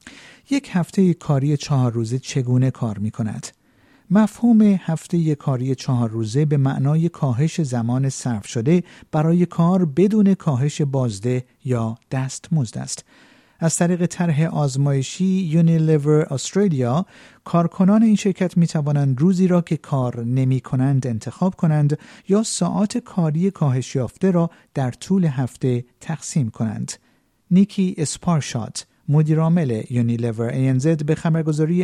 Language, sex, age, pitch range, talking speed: Persian, male, 50-69, 130-175 Hz, 125 wpm